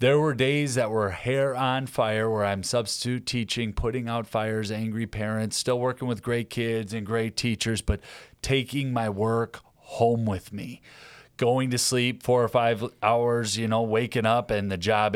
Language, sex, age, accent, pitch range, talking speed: English, male, 30-49, American, 110-130 Hz, 180 wpm